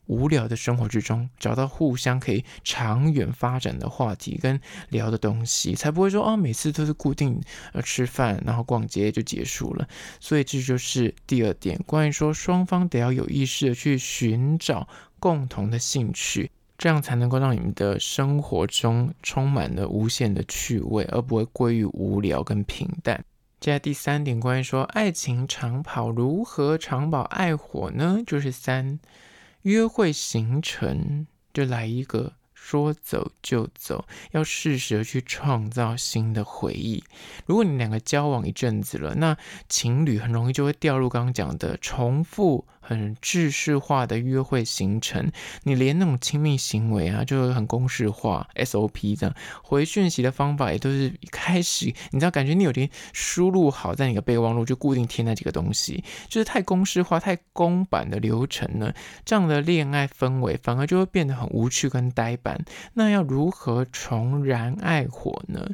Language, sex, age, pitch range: Chinese, male, 20-39, 115-155 Hz